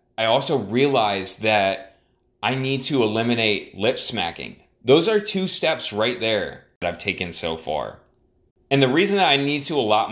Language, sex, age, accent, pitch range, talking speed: English, male, 30-49, American, 100-135 Hz, 180 wpm